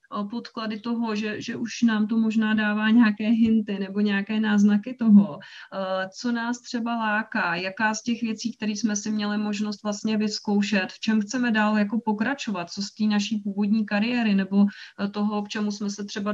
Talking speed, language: 180 wpm, English